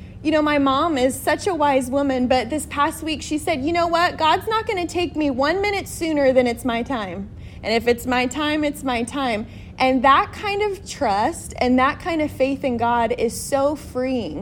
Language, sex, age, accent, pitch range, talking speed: English, female, 20-39, American, 230-280 Hz, 225 wpm